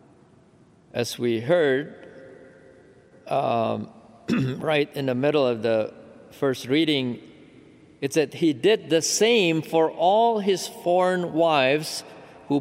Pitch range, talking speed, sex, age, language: 145-185 Hz, 115 wpm, male, 50-69, English